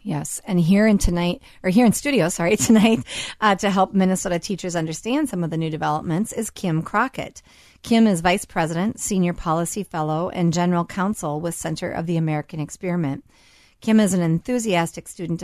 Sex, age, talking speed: female, 40-59, 180 wpm